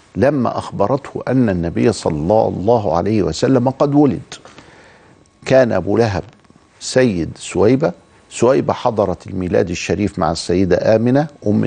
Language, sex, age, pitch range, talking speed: Arabic, male, 50-69, 100-145 Hz, 120 wpm